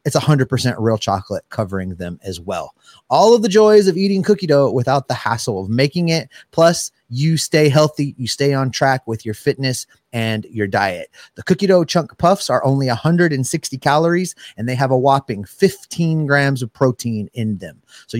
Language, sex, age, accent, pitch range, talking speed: English, male, 30-49, American, 110-150 Hz, 190 wpm